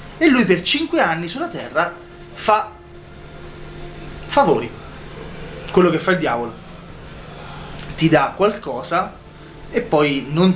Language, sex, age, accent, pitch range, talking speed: Italian, male, 30-49, native, 140-190 Hz, 115 wpm